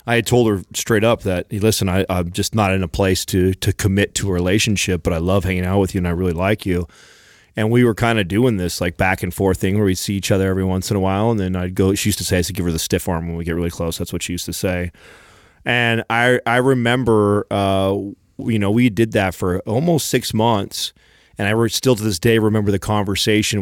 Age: 30-49